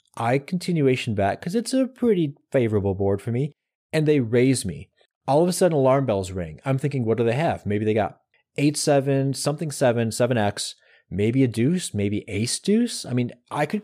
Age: 30-49